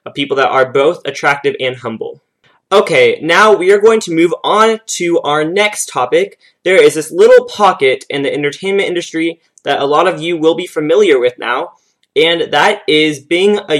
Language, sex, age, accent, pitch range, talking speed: English, male, 20-39, American, 140-200 Hz, 185 wpm